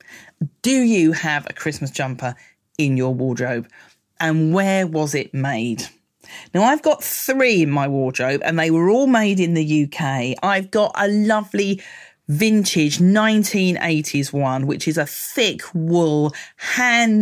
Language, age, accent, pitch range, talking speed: English, 40-59, British, 135-195 Hz, 145 wpm